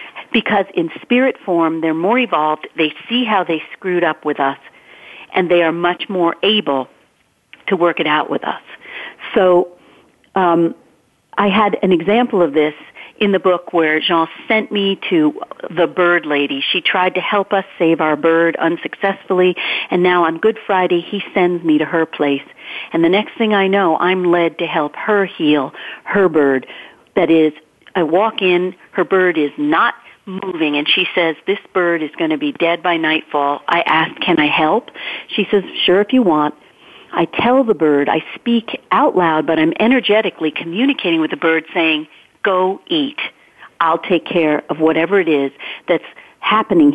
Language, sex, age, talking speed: English, female, 50-69, 180 wpm